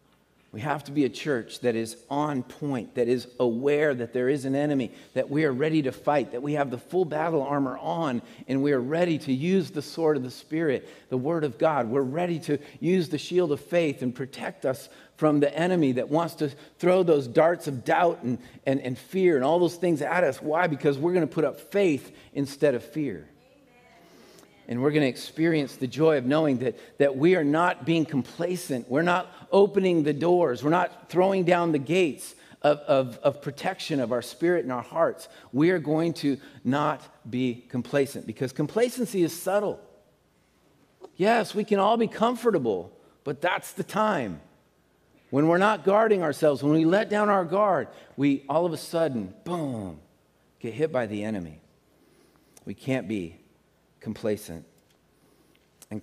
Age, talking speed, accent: 50-69, 185 wpm, American